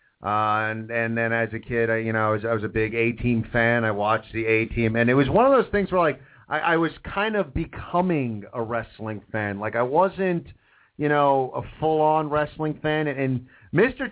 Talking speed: 235 wpm